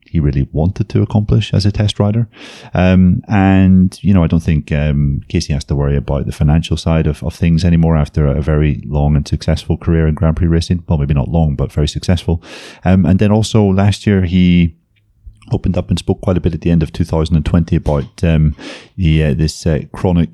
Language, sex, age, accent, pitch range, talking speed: English, male, 30-49, British, 75-90 Hz, 215 wpm